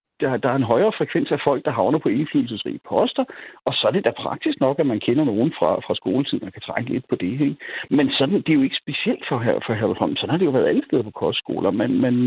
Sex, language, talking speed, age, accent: male, Danish, 280 wpm, 60-79, native